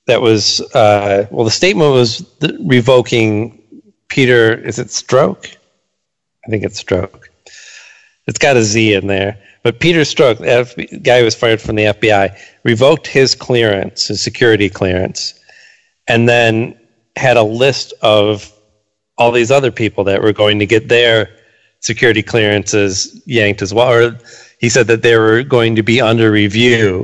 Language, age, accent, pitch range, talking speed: English, 40-59, American, 105-125 Hz, 155 wpm